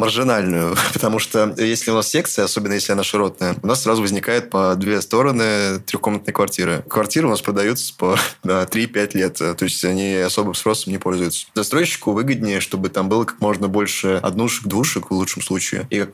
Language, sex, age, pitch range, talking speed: Russian, male, 20-39, 95-115 Hz, 185 wpm